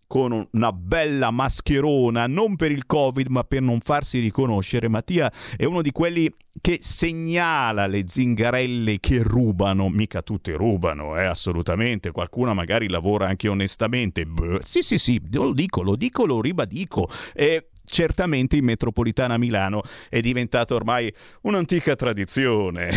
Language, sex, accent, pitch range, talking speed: Italian, male, native, 105-155 Hz, 140 wpm